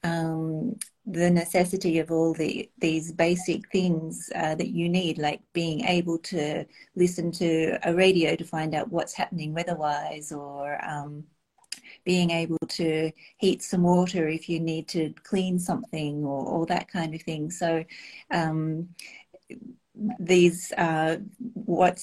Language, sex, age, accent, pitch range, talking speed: English, female, 40-59, Australian, 160-190 Hz, 140 wpm